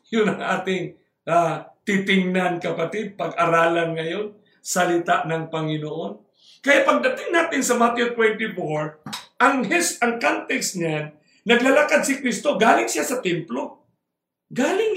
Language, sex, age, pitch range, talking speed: English, male, 50-69, 210-300 Hz, 120 wpm